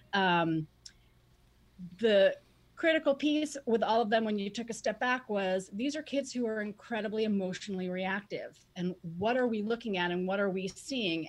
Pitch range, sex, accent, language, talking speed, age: 185-235 Hz, female, American, English, 180 wpm, 30-49